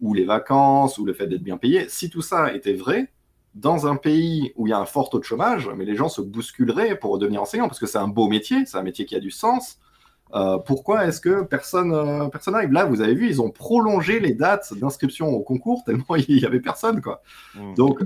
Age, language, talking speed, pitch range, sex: 30-49, French, 245 wpm, 105-145 Hz, male